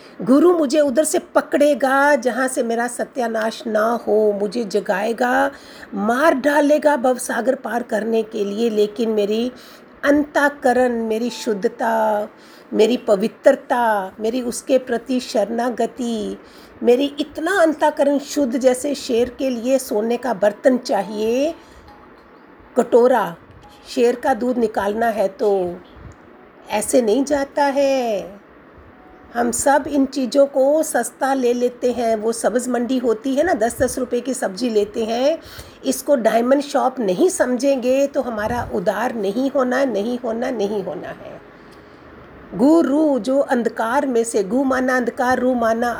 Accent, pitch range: native, 225-275 Hz